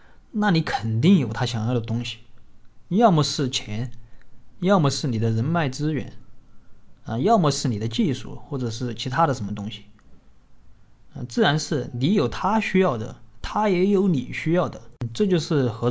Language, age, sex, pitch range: Chinese, 30-49, male, 115-150 Hz